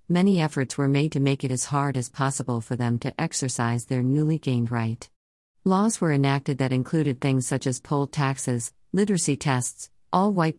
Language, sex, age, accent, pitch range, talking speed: English, female, 50-69, American, 130-160 Hz, 180 wpm